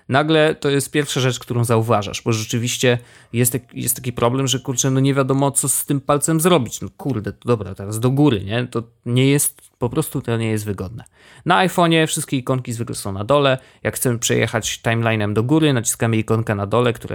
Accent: native